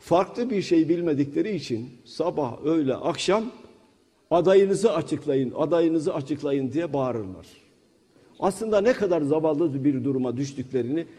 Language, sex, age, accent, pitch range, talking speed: Turkish, male, 50-69, native, 135-225 Hz, 115 wpm